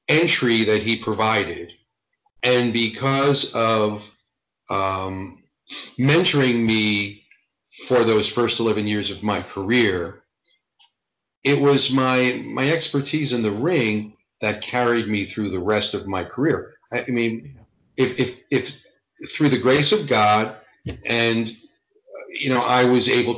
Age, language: 40-59, English